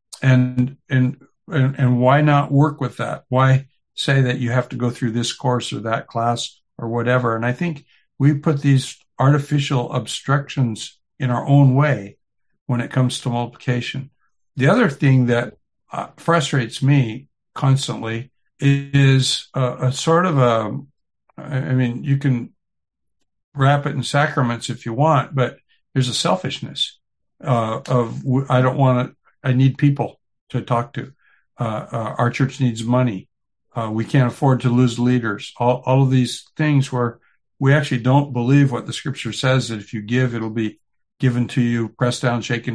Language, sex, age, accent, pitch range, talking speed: English, male, 60-79, American, 120-140 Hz, 170 wpm